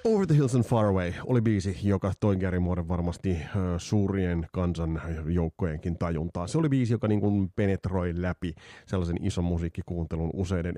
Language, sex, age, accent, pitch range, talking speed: Finnish, male, 30-49, native, 90-125 Hz, 155 wpm